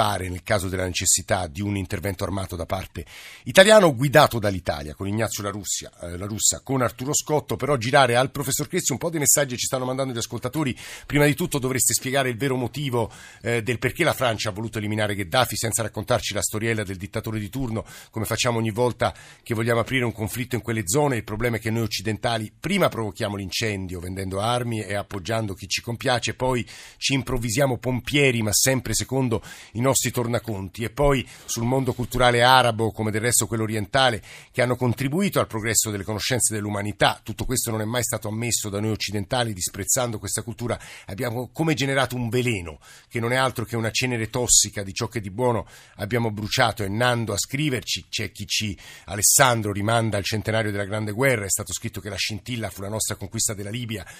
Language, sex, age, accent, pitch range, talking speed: Italian, male, 50-69, native, 105-125 Hz, 195 wpm